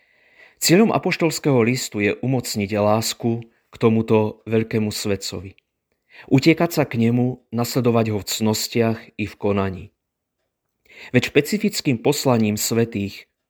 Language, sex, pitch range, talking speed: Slovak, male, 110-125 Hz, 110 wpm